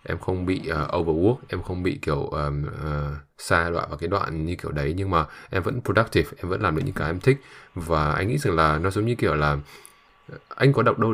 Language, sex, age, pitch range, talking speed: Vietnamese, male, 20-39, 80-100 Hz, 250 wpm